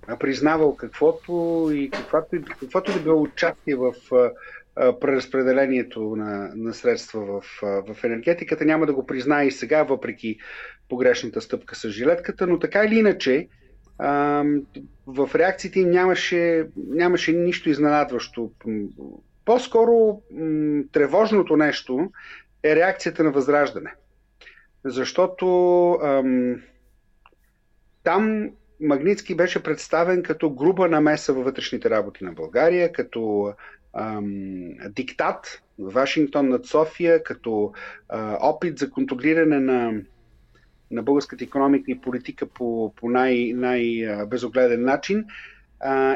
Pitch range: 125-175 Hz